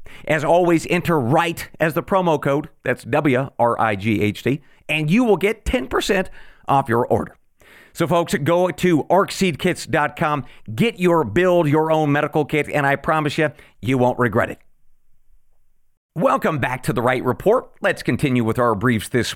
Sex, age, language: male, 40-59, English